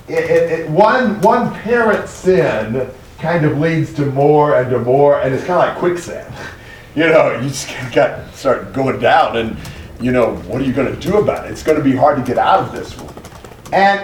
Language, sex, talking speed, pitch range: English, male, 215 wpm, 125-190 Hz